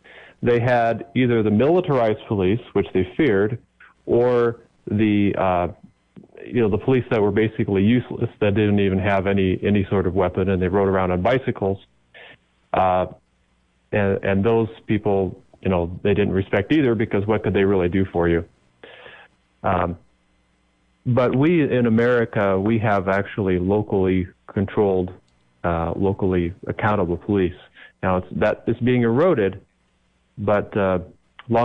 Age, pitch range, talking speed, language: 40-59, 90-110 Hz, 145 wpm, English